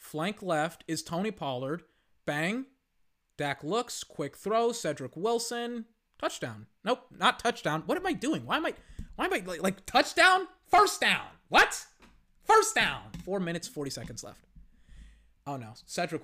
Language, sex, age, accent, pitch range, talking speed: English, male, 30-49, American, 135-170 Hz, 155 wpm